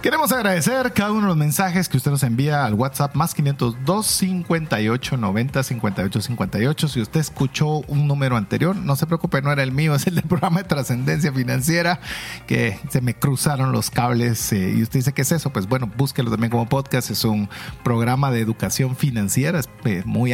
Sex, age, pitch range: male, 40-59, 120-165 Hz